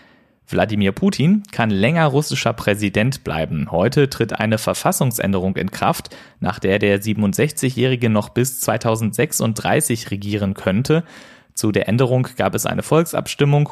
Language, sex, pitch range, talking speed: German, male, 100-130 Hz, 125 wpm